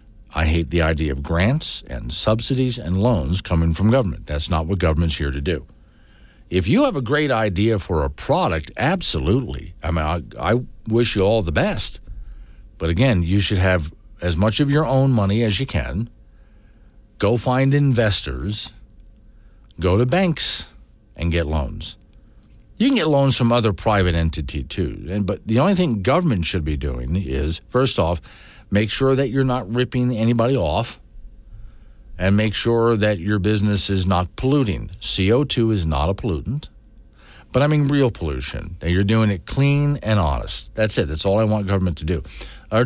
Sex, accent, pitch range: male, American, 90-120 Hz